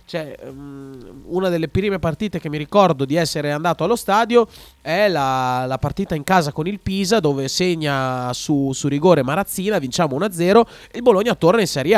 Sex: male